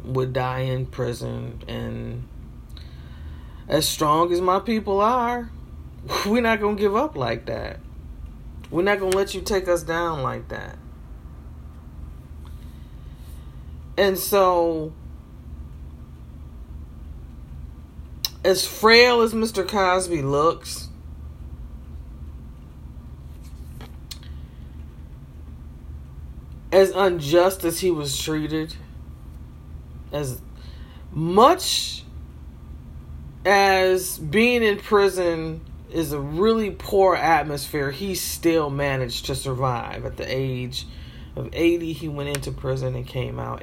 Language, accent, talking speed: English, American, 100 wpm